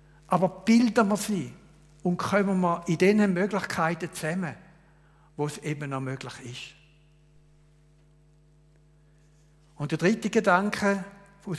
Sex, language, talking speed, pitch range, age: male, German, 115 wpm, 150-190 Hz, 60-79